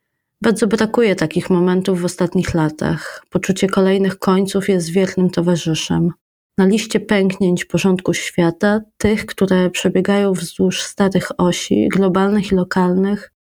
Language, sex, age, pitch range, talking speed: Polish, female, 20-39, 170-195 Hz, 120 wpm